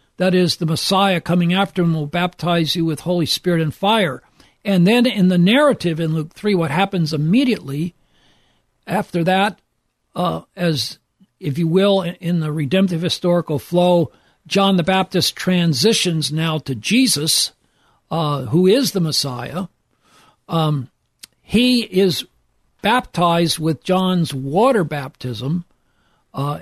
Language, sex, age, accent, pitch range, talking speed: English, male, 60-79, American, 155-190 Hz, 135 wpm